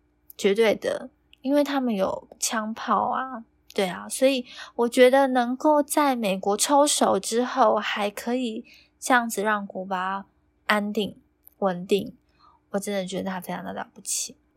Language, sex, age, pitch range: Chinese, female, 20-39, 195-260 Hz